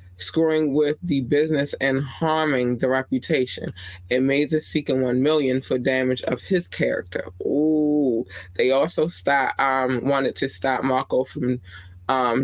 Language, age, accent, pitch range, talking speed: English, 20-39, American, 95-140 Hz, 145 wpm